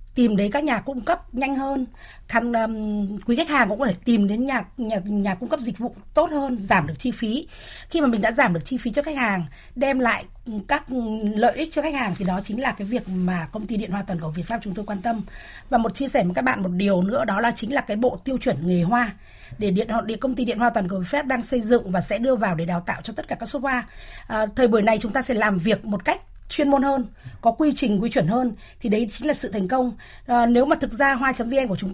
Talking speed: 285 wpm